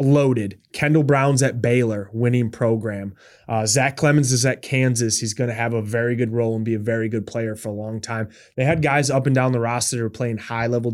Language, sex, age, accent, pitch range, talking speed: English, male, 20-39, American, 115-140 Hz, 225 wpm